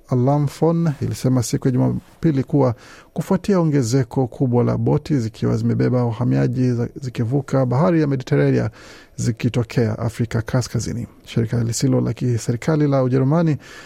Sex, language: male, Swahili